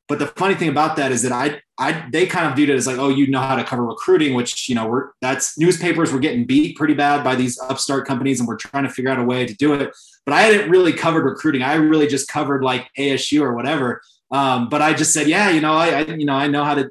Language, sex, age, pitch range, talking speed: English, male, 20-39, 125-145 Hz, 285 wpm